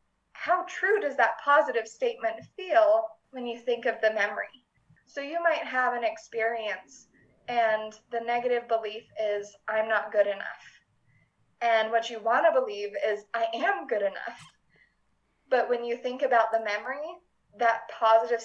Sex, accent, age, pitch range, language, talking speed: female, American, 20-39, 220-270 Hz, English, 155 wpm